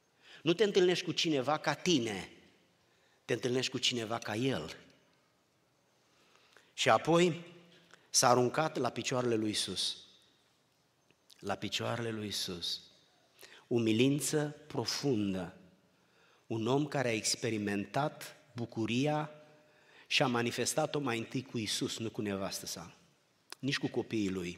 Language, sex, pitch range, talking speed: Romanian, male, 120-150 Hz, 115 wpm